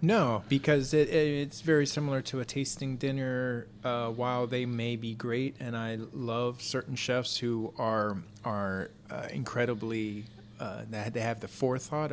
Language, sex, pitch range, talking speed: English, male, 110-125 Hz, 165 wpm